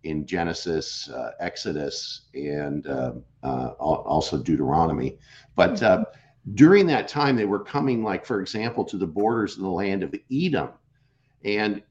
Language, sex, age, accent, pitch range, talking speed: English, male, 50-69, American, 110-155 Hz, 145 wpm